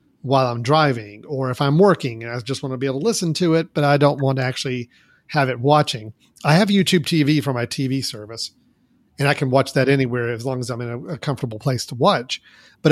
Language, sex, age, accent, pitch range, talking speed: English, male, 40-59, American, 125-150 Hz, 240 wpm